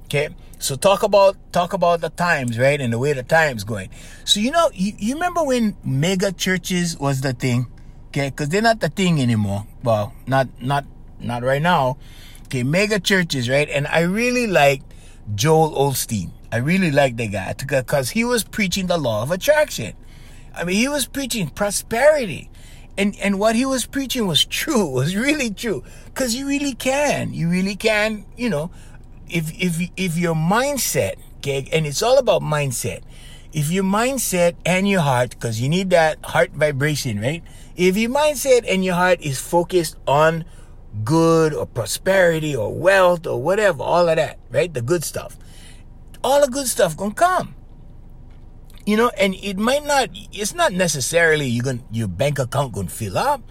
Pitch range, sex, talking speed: 135-205 Hz, male, 180 wpm